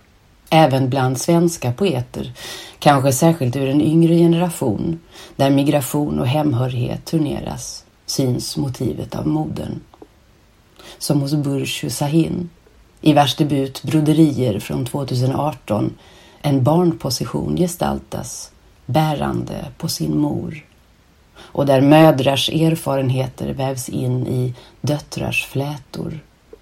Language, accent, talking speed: Swedish, native, 100 wpm